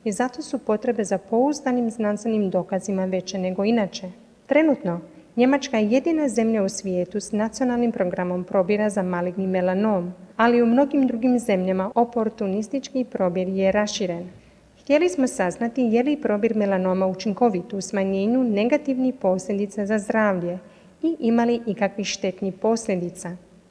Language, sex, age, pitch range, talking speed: Croatian, female, 30-49, 190-255 Hz, 135 wpm